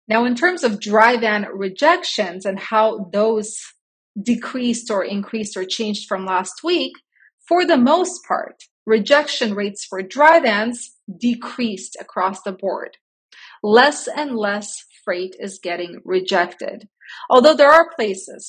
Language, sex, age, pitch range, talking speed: English, female, 30-49, 200-250 Hz, 135 wpm